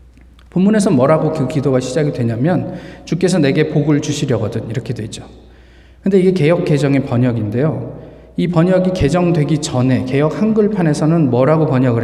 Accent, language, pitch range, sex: native, Korean, 130-185 Hz, male